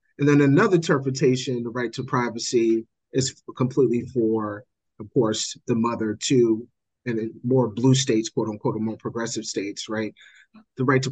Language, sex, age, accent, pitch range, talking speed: English, male, 30-49, American, 115-135 Hz, 155 wpm